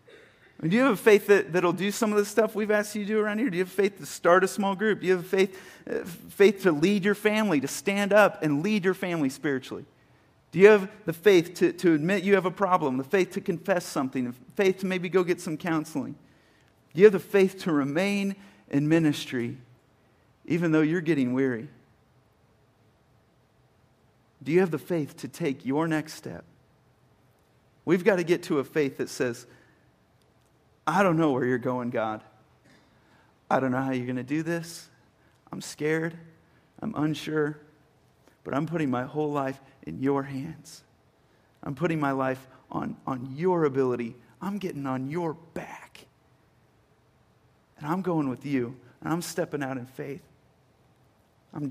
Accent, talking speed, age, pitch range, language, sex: American, 180 wpm, 40-59, 130-185 Hz, English, male